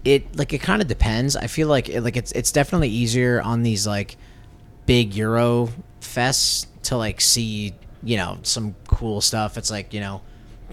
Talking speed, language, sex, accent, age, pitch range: 190 wpm, Danish, male, American, 30-49, 110-125 Hz